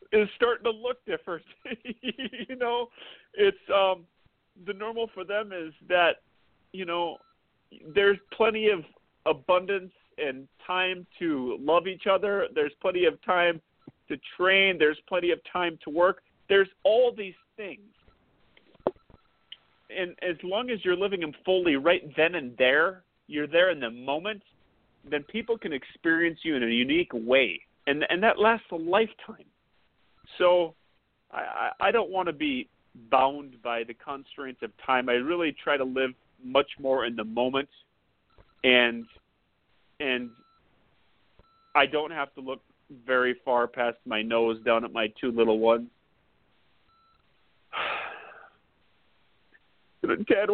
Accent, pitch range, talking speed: American, 140-215 Hz, 140 wpm